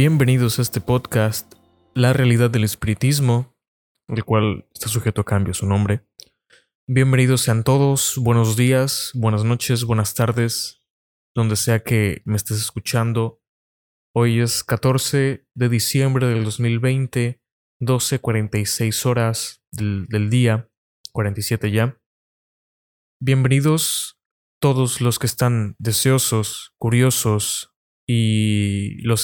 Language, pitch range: Spanish, 110-125 Hz